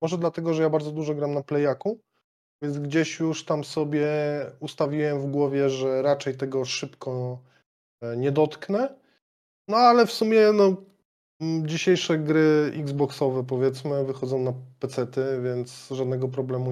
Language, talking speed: Polish, 135 wpm